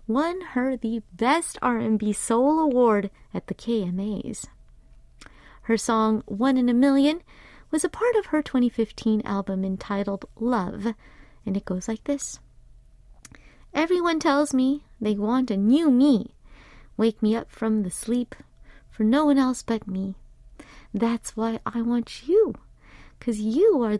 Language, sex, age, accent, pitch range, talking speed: English, female, 30-49, American, 220-285 Hz, 145 wpm